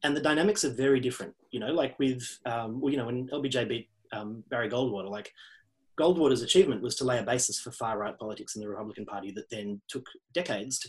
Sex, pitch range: male, 115-145 Hz